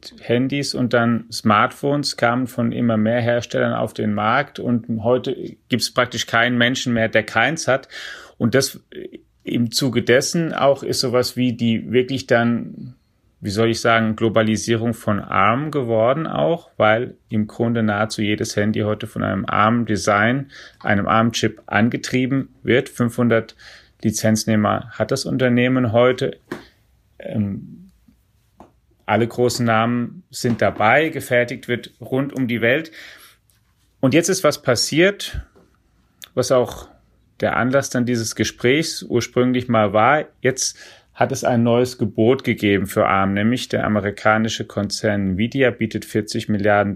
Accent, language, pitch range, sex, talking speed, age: German, German, 110-130 Hz, male, 140 wpm, 30-49